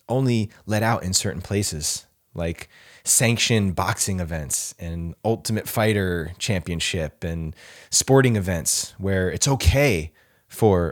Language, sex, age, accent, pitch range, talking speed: English, male, 20-39, American, 95-125 Hz, 115 wpm